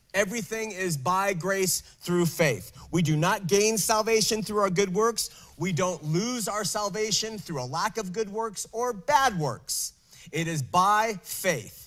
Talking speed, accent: 165 wpm, American